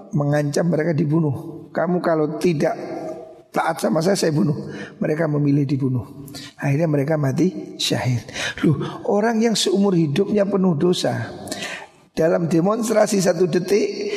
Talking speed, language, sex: 125 wpm, Indonesian, male